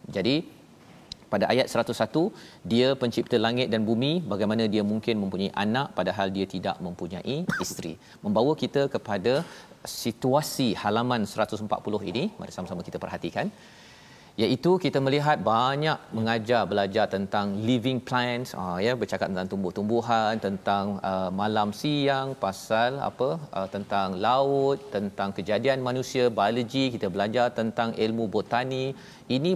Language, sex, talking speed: Malayalam, male, 125 wpm